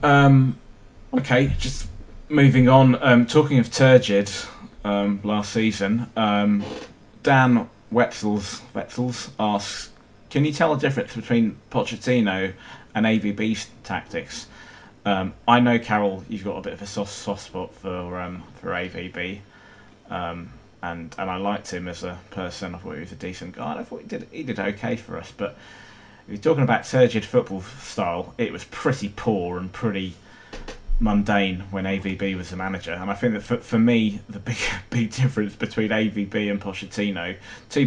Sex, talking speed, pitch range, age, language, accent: male, 175 wpm, 100-115 Hz, 20-39, English, British